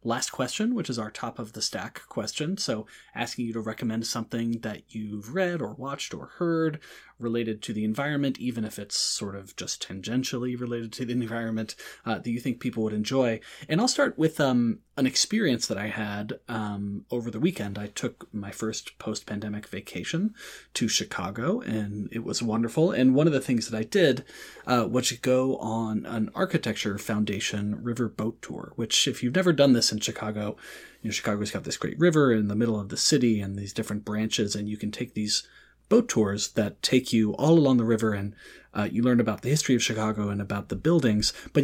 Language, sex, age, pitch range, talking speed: English, male, 30-49, 105-125 Hz, 205 wpm